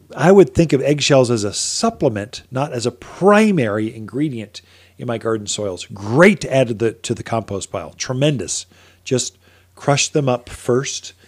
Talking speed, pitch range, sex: 170 wpm, 100-145 Hz, male